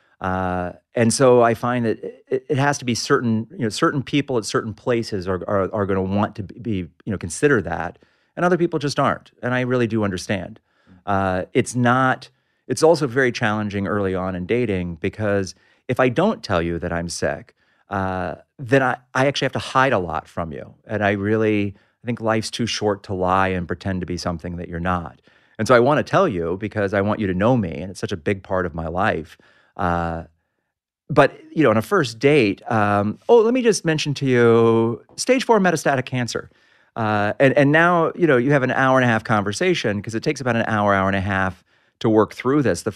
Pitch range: 95-125 Hz